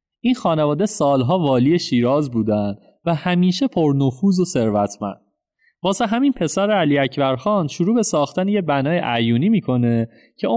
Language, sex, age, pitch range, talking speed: Persian, male, 30-49, 120-175 Hz, 140 wpm